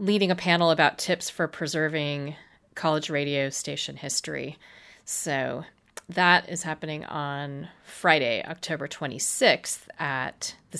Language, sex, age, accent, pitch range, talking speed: English, female, 30-49, American, 150-180 Hz, 115 wpm